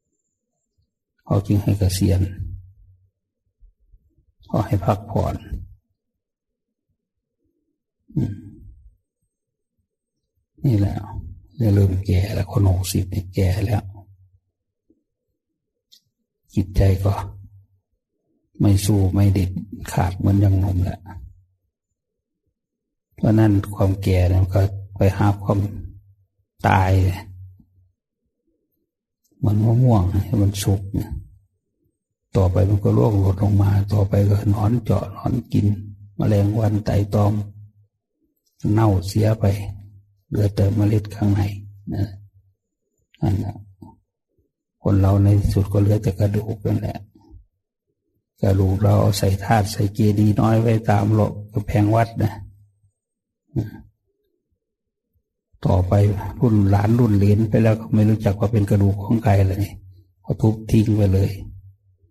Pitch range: 95-105 Hz